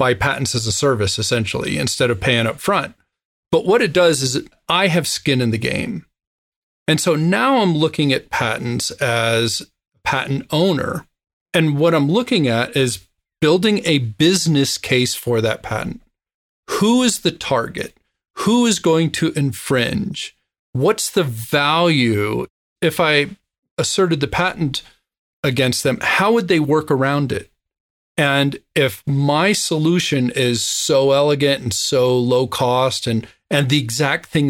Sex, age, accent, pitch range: male, 40-59, American, 120-155 Hz